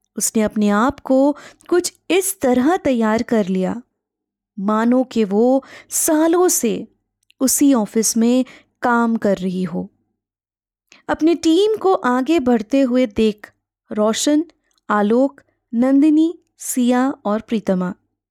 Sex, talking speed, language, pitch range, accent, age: female, 115 wpm, Hindi, 220-305 Hz, native, 20-39